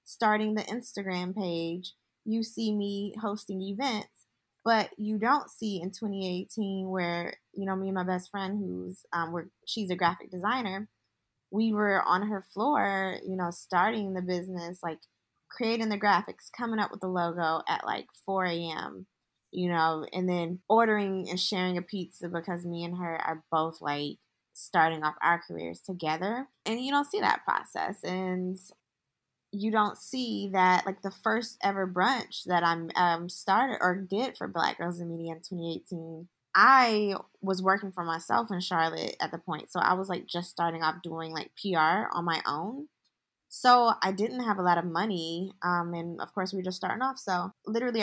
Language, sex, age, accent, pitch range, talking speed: English, female, 20-39, American, 170-205 Hz, 180 wpm